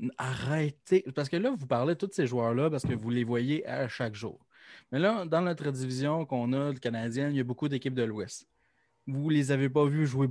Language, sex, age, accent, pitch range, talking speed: French, male, 20-39, Canadian, 120-145 Hz, 240 wpm